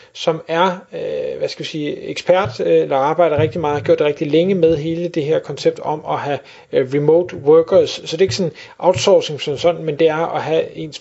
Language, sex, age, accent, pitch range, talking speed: Danish, male, 30-49, native, 145-190 Hz, 220 wpm